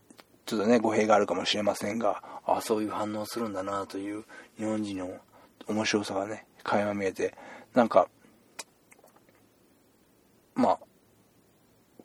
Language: Japanese